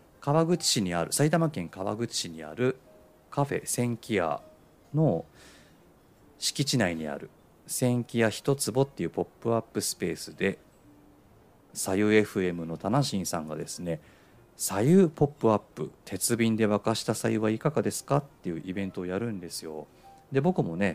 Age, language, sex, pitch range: 40-59, Japanese, male, 90-135 Hz